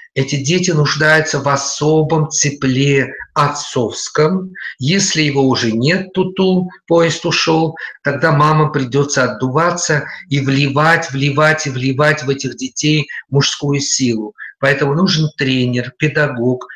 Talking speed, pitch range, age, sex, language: 115 wpm, 130-160 Hz, 50-69, male, Russian